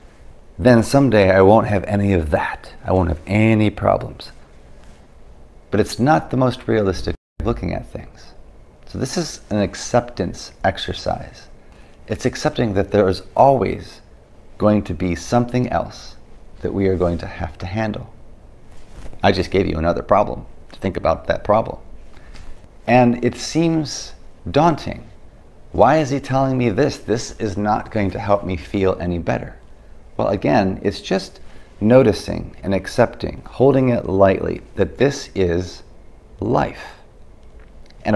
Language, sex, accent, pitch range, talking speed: English, male, American, 85-115 Hz, 145 wpm